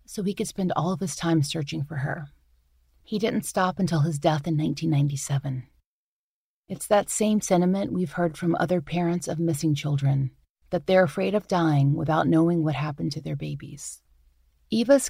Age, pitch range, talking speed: 30-49, 150-195 Hz, 175 wpm